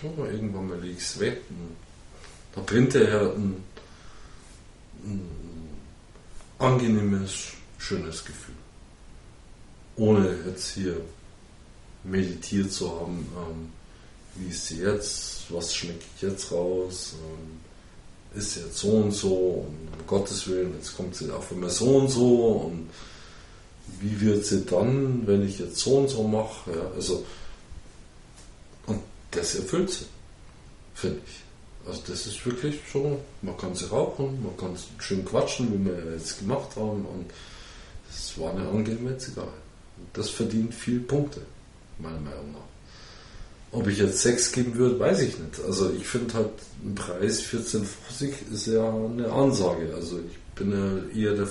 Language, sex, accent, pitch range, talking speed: German, male, German, 85-110 Hz, 145 wpm